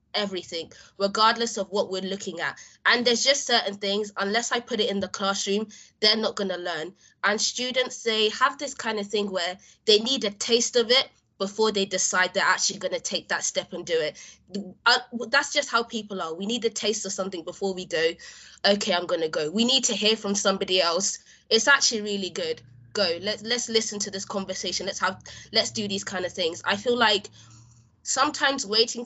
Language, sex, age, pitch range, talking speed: English, female, 20-39, 195-240 Hz, 210 wpm